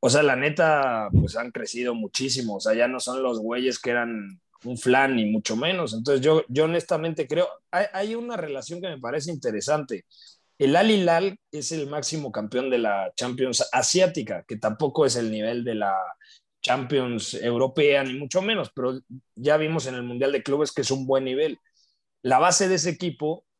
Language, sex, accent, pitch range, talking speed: Spanish, male, Mexican, 120-160 Hz, 190 wpm